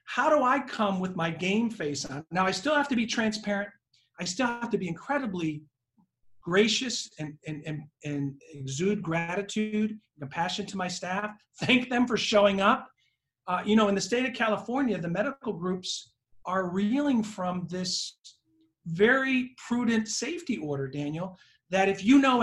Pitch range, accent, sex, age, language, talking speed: 165-230 Hz, American, male, 40-59, English, 170 wpm